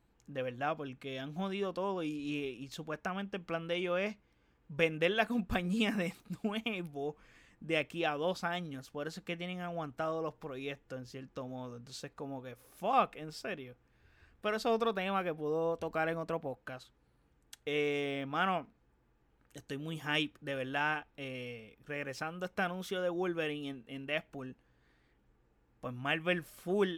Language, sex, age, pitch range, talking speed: Spanish, male, 30-49, 140-180 Hz, 160 wpm